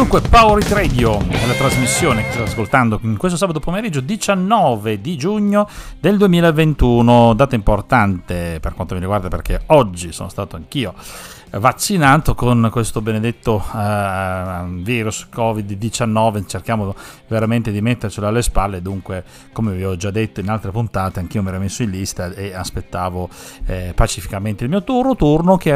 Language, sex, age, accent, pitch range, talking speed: Italian, male, 40-59, native, 95-130 Hz, 155 wpm